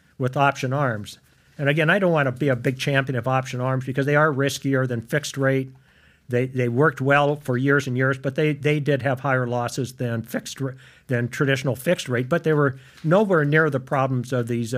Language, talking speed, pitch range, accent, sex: English, 215 wpm, 125-150 Hz, American, male